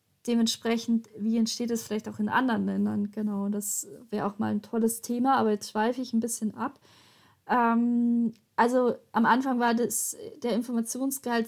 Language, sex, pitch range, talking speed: German, female, 220-245 Hz, 165 wpm